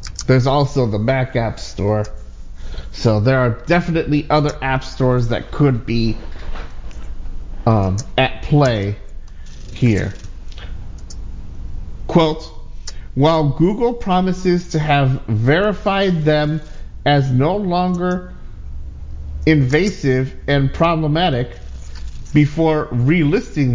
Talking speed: 90 wpm